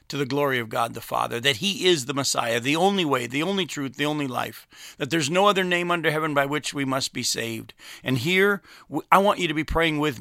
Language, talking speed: English, 255 wpm